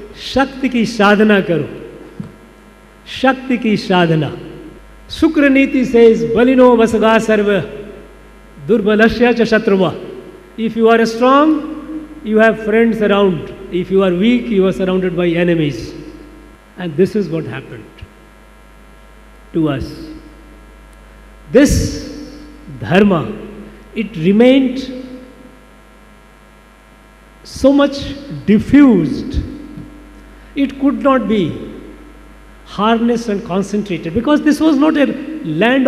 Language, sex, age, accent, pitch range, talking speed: Tamil, male, 50-69, native, 175-240 Hz, 60 wpm